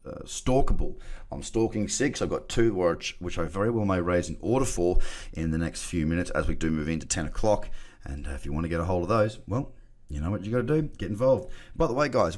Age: 30-49